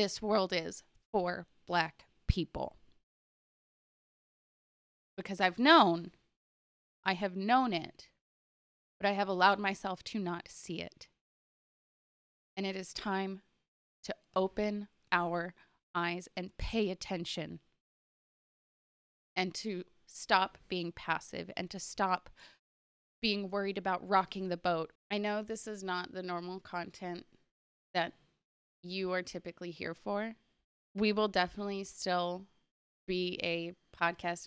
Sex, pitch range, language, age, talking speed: female, 170-195 Hz, English, 20-39, 120 wpm